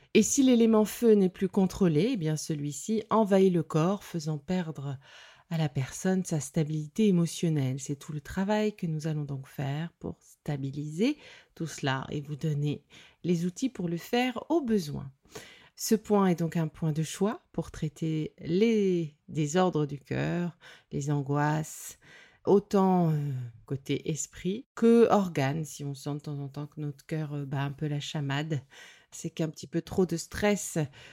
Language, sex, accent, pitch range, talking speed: French, female, French, 155-220 Hz, 165 wpm